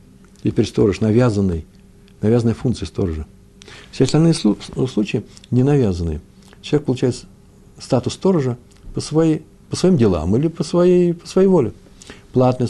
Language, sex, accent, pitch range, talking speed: Russian, male, native, 100-135 Hz, 130 wpm